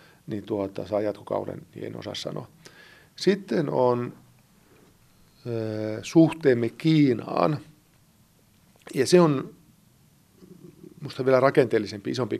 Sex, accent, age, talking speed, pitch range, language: male, native, 50-69, 90 wpm, 105-150 Hz, Finnish